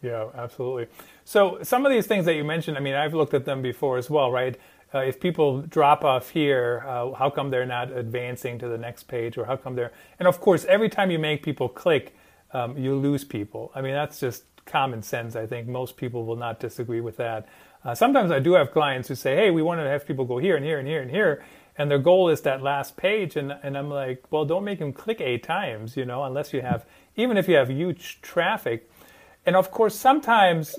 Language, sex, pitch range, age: English, male, 125-160 Hz, 40-59